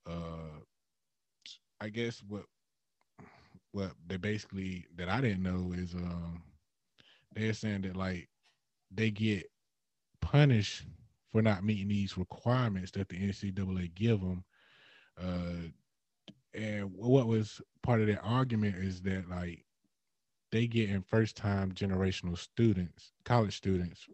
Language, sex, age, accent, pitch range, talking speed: English, male, 20-39, American, 90-105 Hz, 125 wpm